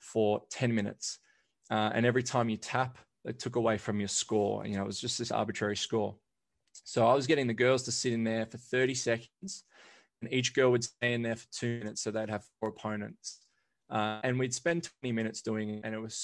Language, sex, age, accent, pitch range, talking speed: English, male, 20-39, Australian, 110-125 Hz, 235 wpm